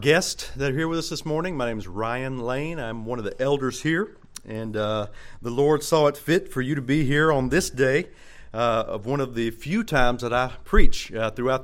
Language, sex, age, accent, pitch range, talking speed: English, male, 40-59, American, 110-140 Hz, 235 wpm